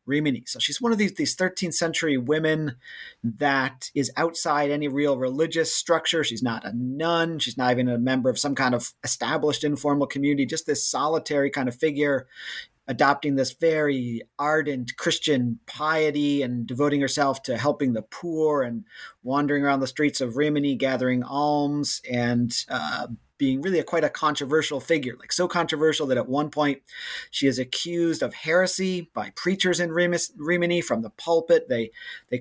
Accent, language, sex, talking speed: American, English, male, 165 wpm